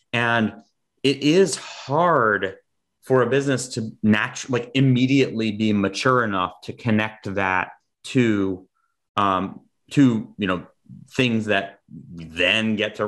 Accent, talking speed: American, 125 wpm